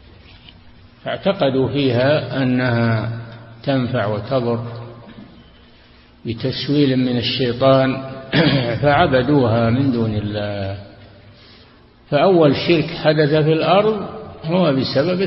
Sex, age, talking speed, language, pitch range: male, 60-79, 75 wpm, Arabic, 115-145 Hz